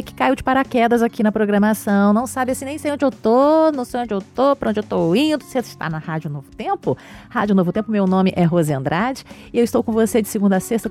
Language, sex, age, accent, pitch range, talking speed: Portuguese, female, 30-49, Brazilian, 185-260 Hz, 275 wpm